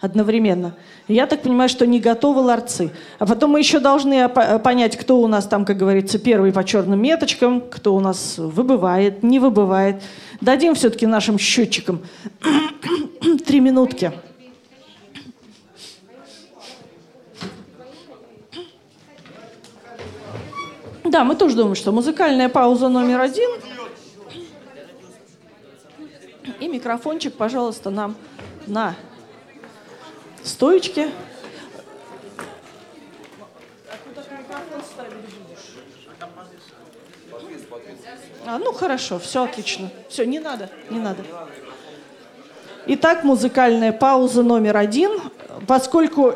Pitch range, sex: 215-280 Hz, female